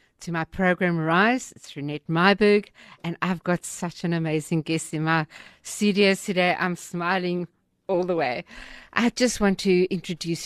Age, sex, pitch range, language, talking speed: 50-69, female, 160-195 Hz, English, 160 wpm